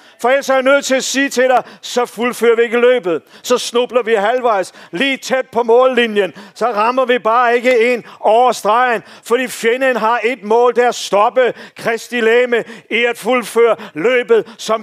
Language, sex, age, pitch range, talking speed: Danish, male, 50-69, 220-260 Hz, 190 wpm